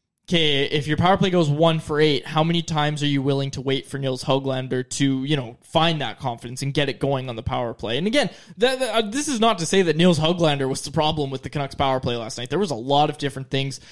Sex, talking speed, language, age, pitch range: male, 270 wpm, English, 20-39, 135-175 Hz